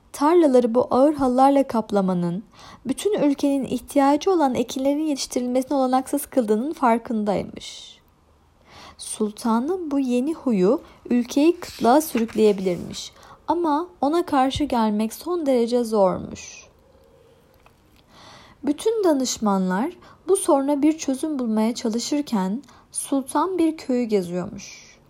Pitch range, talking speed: 225-300 Hz, 95 wpm